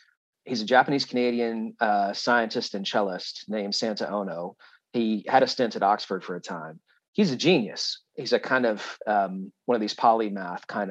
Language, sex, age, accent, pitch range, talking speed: English, male, 40-59, American, 110-130 Hz, 170 wpm